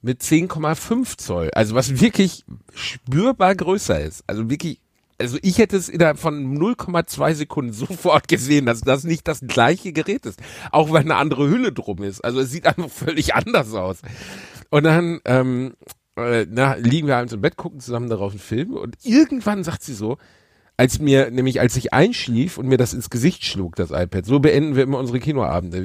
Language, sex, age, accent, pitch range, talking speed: German, male, 40-59, German, 120-170 Hz, 190 wpm